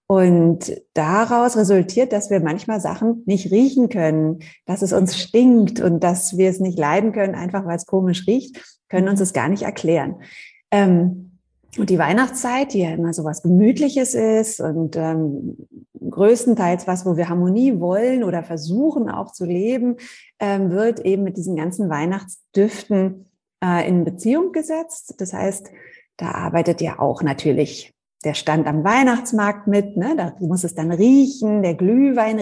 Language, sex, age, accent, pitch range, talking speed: German, female, 30-49, German, 175-225 Hz, 155 wpm